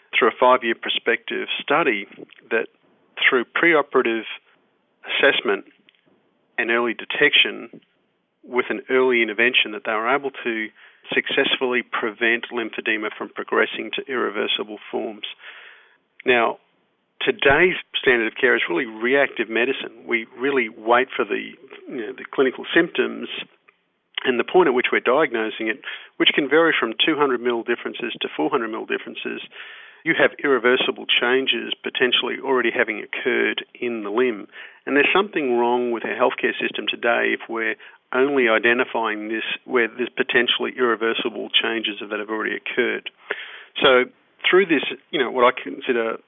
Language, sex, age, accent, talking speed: English, male, 50-69, Australian, 140 wpm